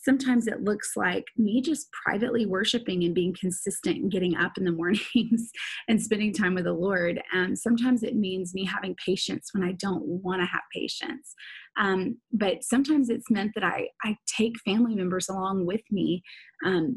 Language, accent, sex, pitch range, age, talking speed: English, American, female, 190-235 Hz, 20-39, 185 wpm